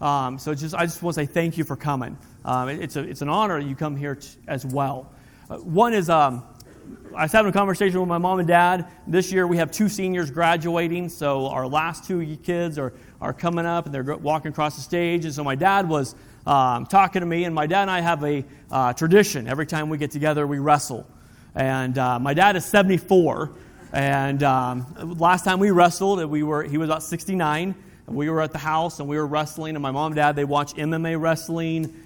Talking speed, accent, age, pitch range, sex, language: 230 wpm, American, 40-59, 145-180 Hz, male, English